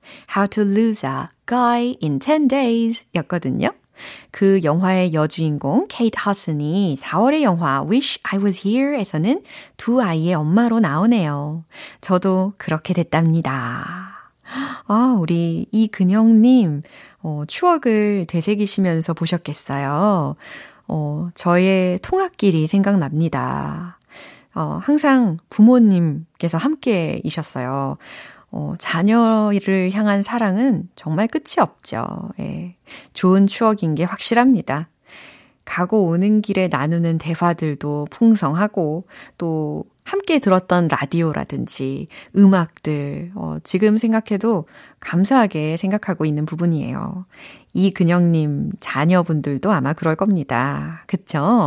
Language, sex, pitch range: Korean, female, 160-215 Hz